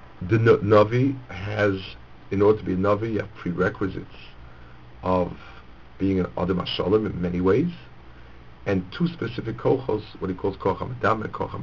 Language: English